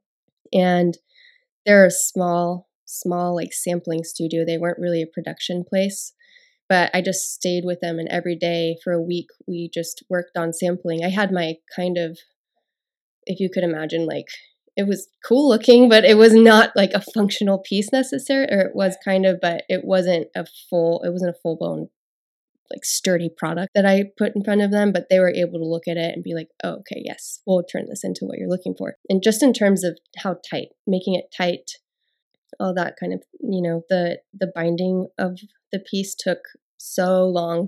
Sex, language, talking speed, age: female, English, 200 wpm, 20-39